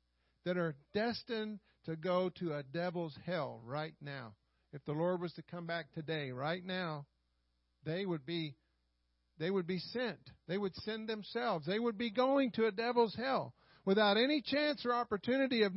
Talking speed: 175 wpm